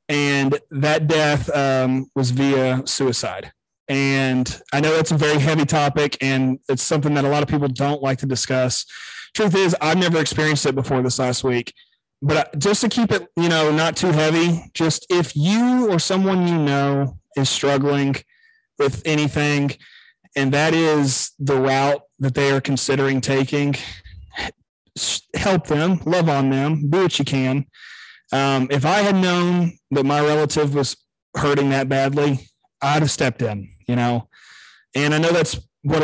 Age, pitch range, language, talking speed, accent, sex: 30-49, 135-160 Hz, English, 165 wpm, American, male